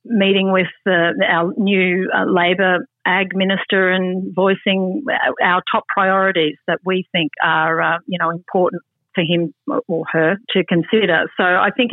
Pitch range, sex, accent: 165-195 Hz, female, Australian